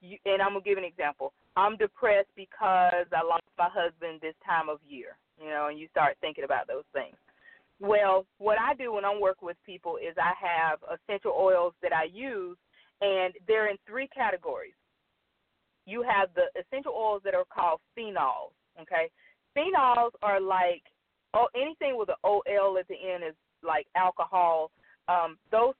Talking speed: 170 wpm